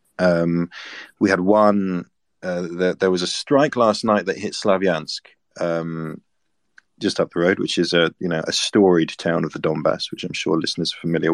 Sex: male